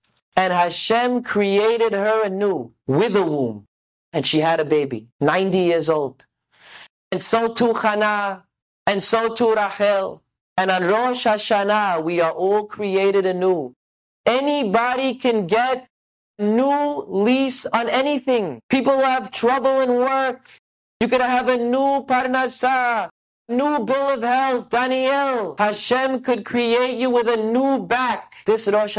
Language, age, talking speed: English, 30-49, 135 wpm